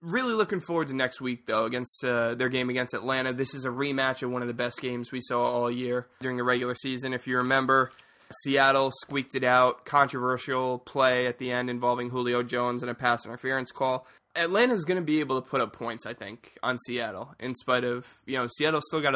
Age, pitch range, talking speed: 20-39, 125-145 Hz, 225 wpm